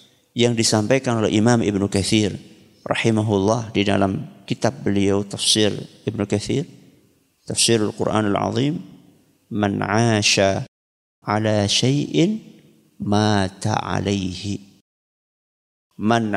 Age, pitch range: 50-69, 105-150 Hz